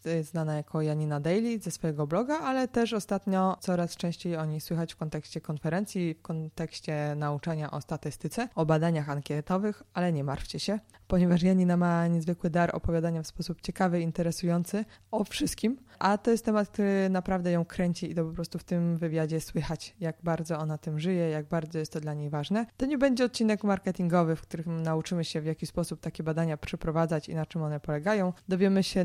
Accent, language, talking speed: native, Polish, 190 wpm